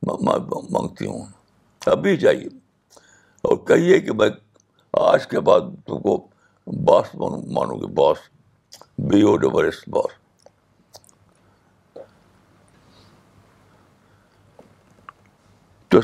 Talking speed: 75 wpm